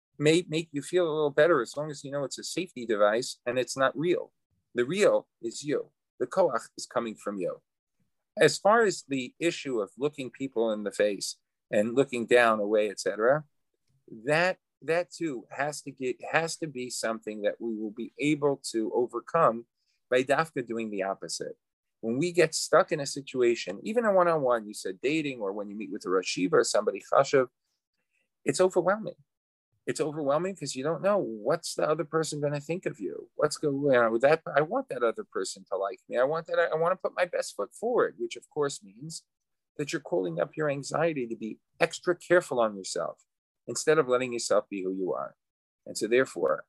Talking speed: 205 wpm